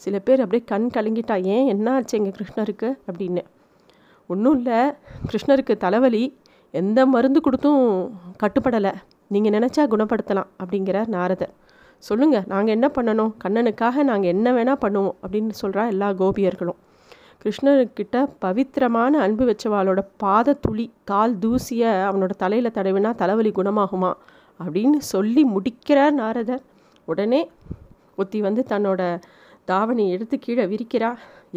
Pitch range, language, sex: 200-270 Hz, Tamil, female